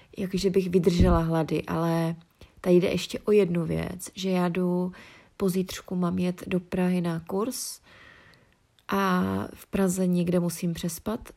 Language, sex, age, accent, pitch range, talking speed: Czech, female, 30-49, native, 175-195 Hz, 145 wpm